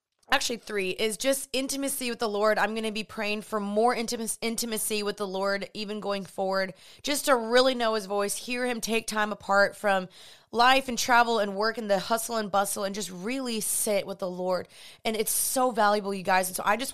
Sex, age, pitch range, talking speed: female, 20-39, 200-240 Hz, 215 wpm